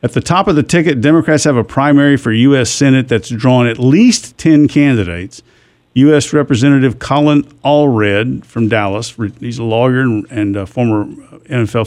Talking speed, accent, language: 160 wpm, American, English